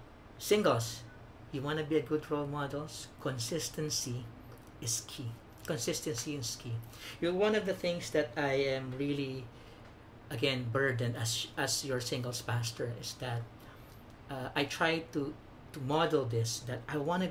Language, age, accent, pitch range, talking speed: English, 50-69, Filipino, 115-150 Hz, 155 wpm